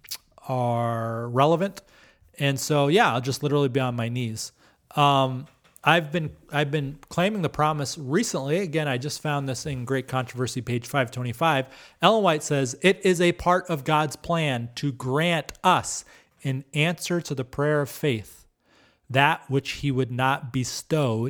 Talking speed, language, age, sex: 160 wpm, English, 30-49, male